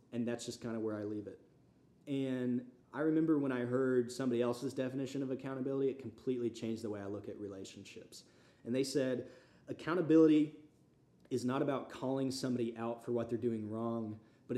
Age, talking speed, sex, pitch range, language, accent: 30-49, 185 wpm, male, 110-135 Hz, English, American